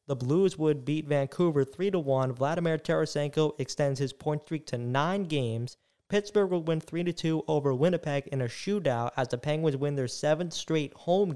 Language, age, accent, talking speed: English, 20-39, American, 170 wpm